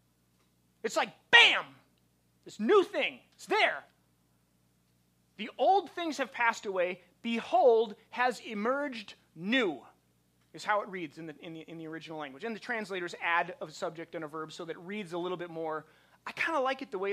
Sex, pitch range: male, 160-245 Hz